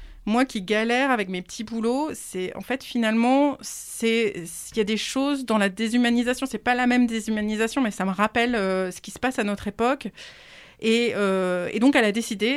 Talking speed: 210 wpm